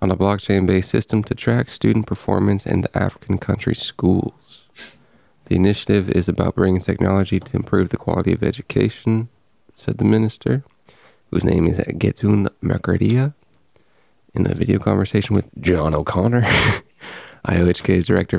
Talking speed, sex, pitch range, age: 140 wpm, male, 95-110 Hz, 20-39